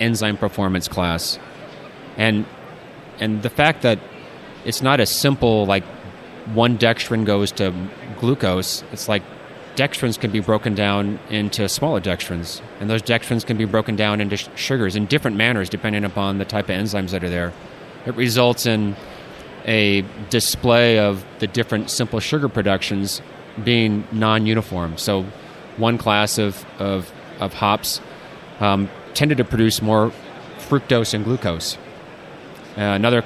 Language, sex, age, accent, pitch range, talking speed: English, male, 30-49, American, 100-120 Hz, 145 wpm